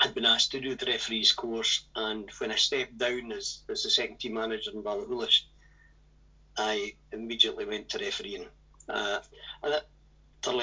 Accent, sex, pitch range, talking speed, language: British, male, 110-145 Hz, 170 wpm, English